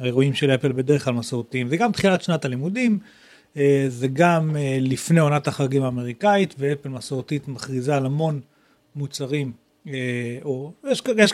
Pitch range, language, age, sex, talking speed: 135-180 Hz, Hebrew, 40-59, male, 125 wpm